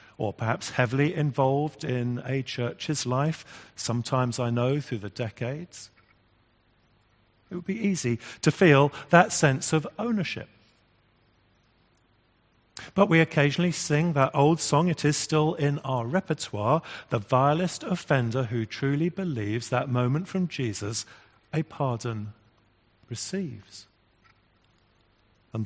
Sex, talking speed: male, 120 wpm